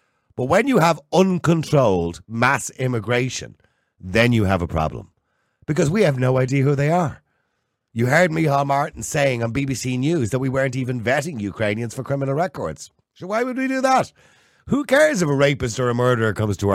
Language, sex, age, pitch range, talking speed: English, male, 50-69, 115-175 Hz, 190 wpm